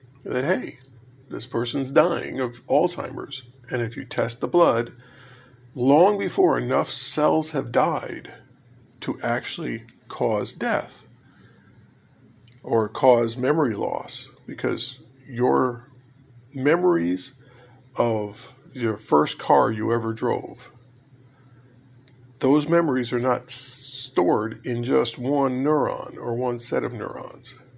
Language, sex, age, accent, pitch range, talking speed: English, male, 50-69, American, 120-135 Hz, 110 wpm